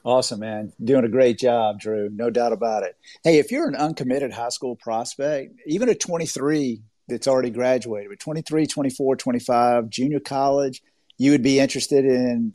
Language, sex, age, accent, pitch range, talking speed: English, male, 50-69, American, 115-140 Hz, 170 wpm